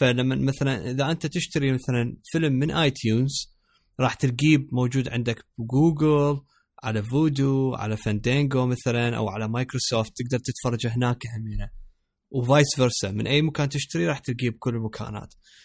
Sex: male